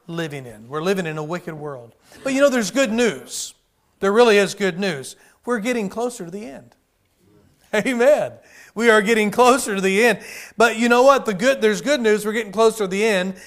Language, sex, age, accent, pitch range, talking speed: English, male, 40-59, American, 185-225 Hz, 215 wpm